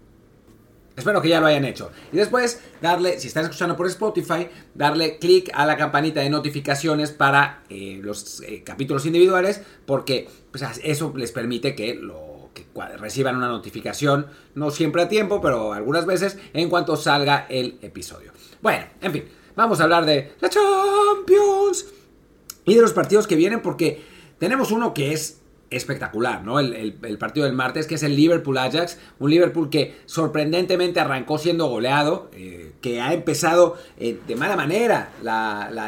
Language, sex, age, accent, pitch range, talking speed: Spanish, male, 40-59, Mexican, 125-175 Hz, 160 wpm